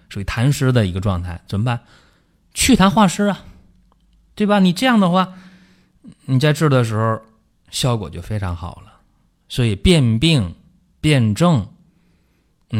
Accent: native